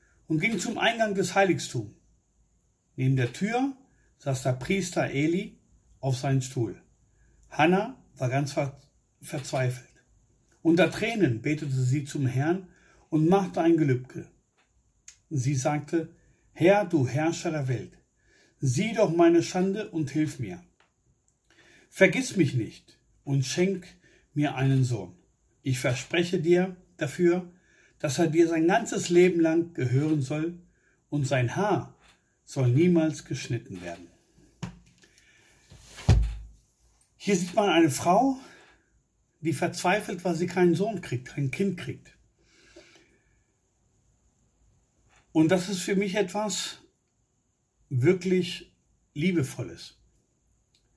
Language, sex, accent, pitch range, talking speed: German, male, German, 130-180 Hz, 110 wpm